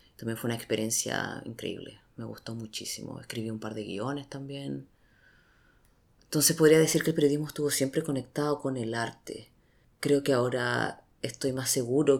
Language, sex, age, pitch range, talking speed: English, female, 30-49, 110-125 Hz, 155 wpm